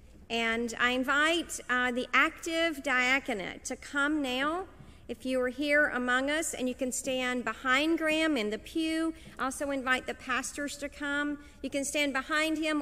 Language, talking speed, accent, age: English, 170 wpm, American, 50-69